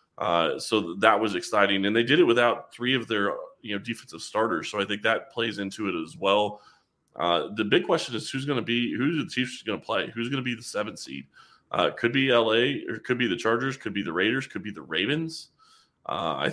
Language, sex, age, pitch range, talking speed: English, male, 20-39, 100-115 Hz, 245 wpm